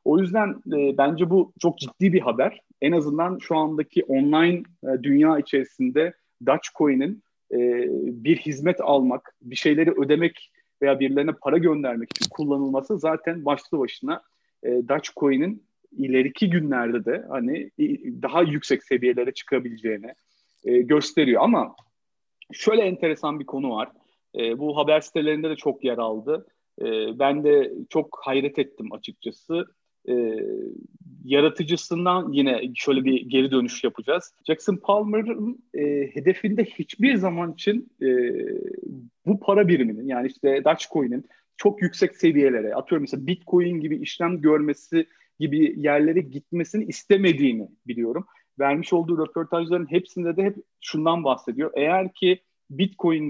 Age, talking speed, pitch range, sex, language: 40-59, 130 wpm, 140-205 Hz, male, Turkish